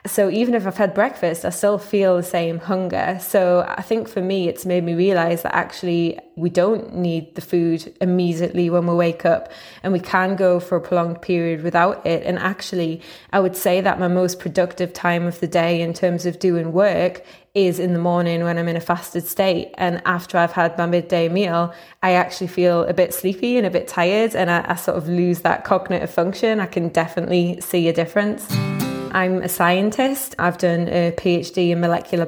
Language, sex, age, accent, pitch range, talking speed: English, female, 20-39, British, 175-190 Hz, 210 wpm